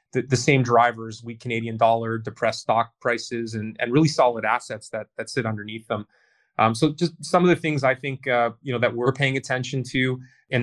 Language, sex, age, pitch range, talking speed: English, male, 30-49, 115-130 Hz, 215 wpm